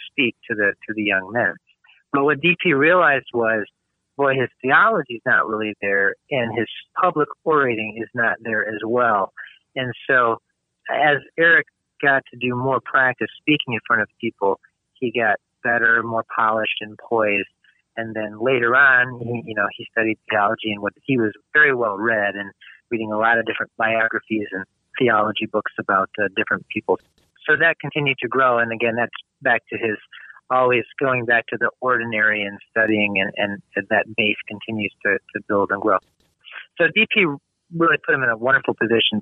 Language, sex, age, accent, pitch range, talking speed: English, male, 40-59, American, 105-135 Hz, 180 wpm